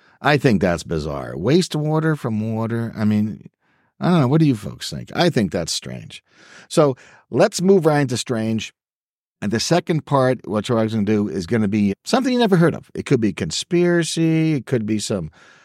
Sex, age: male, 50-69